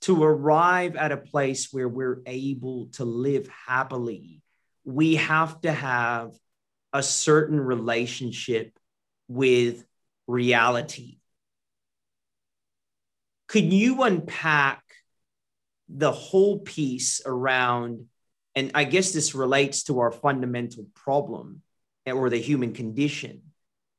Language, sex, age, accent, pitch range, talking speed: English, male, 40-59, American, 125-160 Hz, 100 wpm